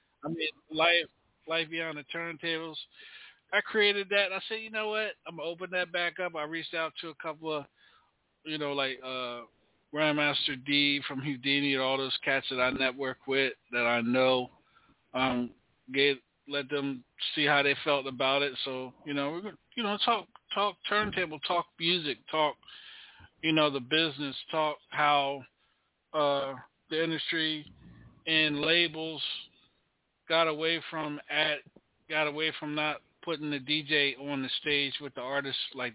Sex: male